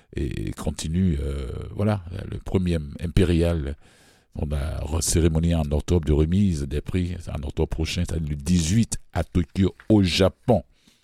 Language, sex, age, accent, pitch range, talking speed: French, male, 60-79, French, 75-95 Hz, 145 wpm